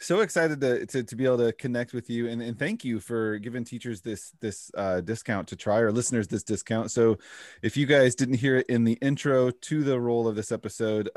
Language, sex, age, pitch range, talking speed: English, male, 20-39, 105-130 Hz, 235 wpm